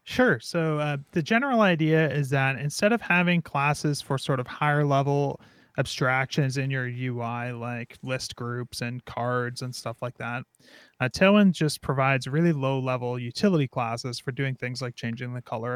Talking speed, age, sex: 175 wpm, 30-49, male